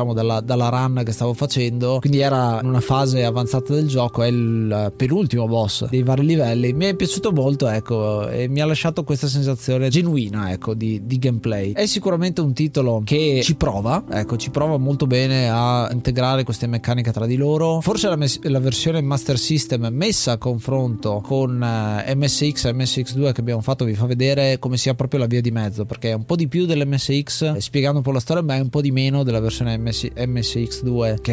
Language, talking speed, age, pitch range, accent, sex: Italian, 205 wpm, 20-39, 120-145 Hz, native, male